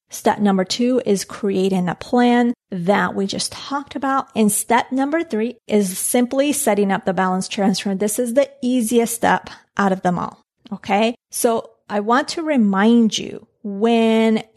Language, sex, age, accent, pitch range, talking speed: English, female, 30-49, American, 200-245 Hz, 165 wpm